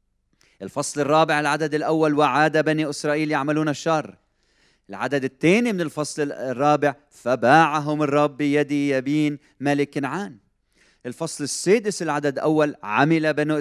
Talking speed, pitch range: 115 wpm, 130-175 Hz